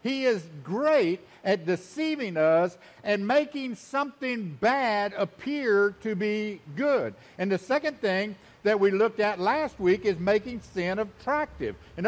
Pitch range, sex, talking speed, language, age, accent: 200-255 Hz, male, 145 wpm, English, 60-79, American